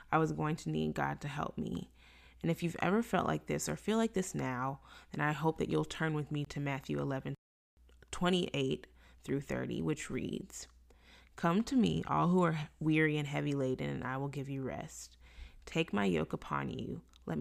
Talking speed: 205 wpm